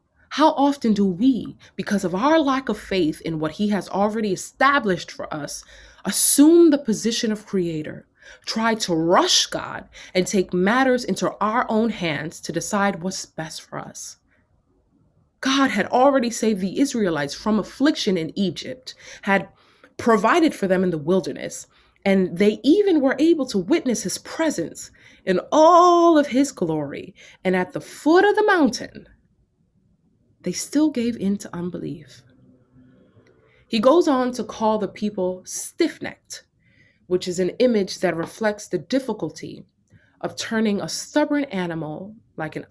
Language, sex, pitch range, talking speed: English, female, 170-250 Hz, 150 wpm